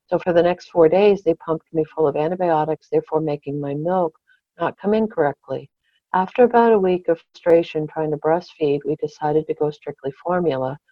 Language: English